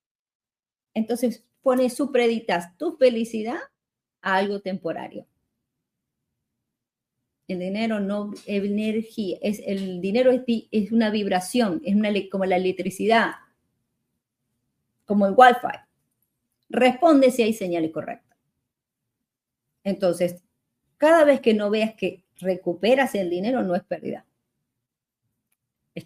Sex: female